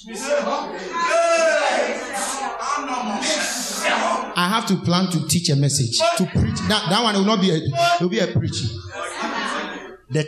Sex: male